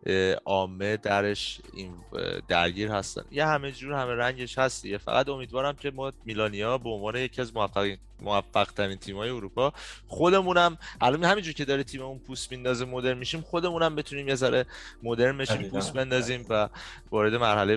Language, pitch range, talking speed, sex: Persian, 95-130 Hz, 160 wpm, male